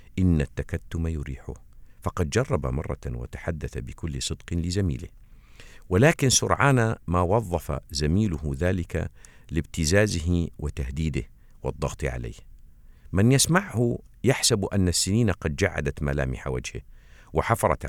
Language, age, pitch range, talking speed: Arabic, 50-69, 70-105 Hz, 100 wpm